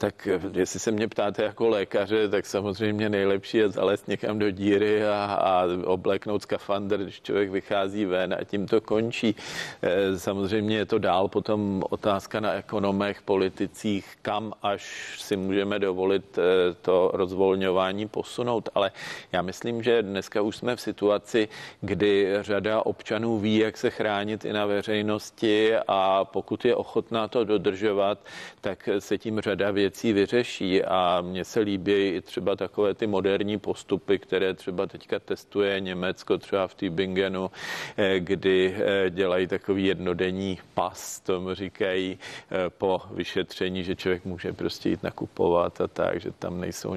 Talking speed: 145 wpm